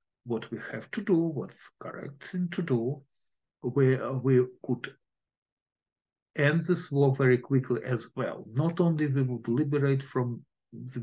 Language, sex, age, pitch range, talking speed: English, male, 50-69, 115-140 Hz, 150 wpm